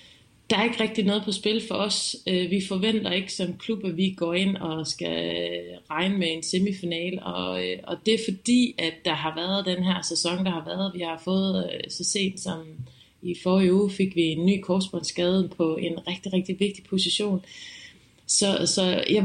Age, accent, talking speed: 20-39, native, 195 wpm